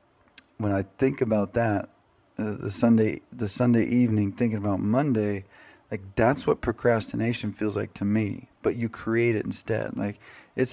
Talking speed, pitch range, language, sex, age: 160 wpm, 105-135 Hz, English, male, 20-39